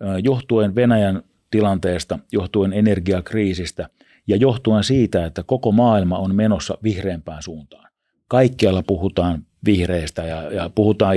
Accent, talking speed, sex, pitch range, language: native, 115 wpm, male, 90-105 Hz, Finnish